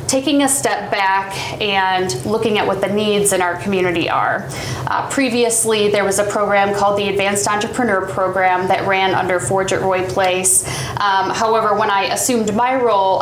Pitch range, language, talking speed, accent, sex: 185-220 Hz, English, 175 wpm, American, female